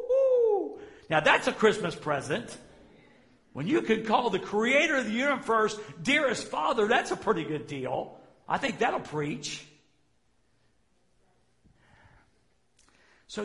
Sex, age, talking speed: male, 60-79, 115 wpm